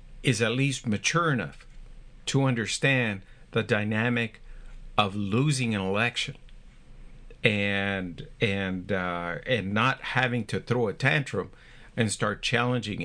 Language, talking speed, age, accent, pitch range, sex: English, 120 wpm, 50-69, American, 105-130 Hz, male